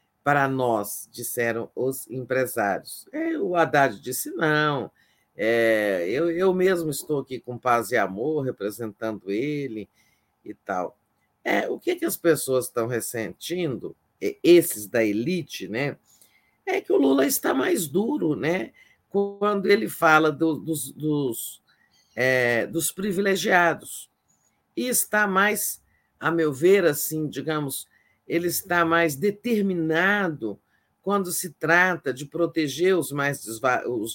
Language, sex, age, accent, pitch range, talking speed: Portuguese, male, 50-69, Brazilian, 120-170 Hz, 130 wpm